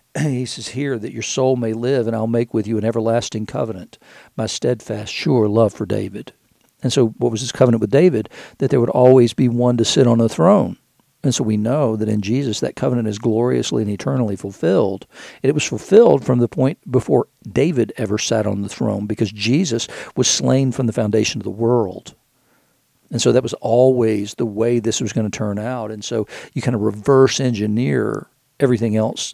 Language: English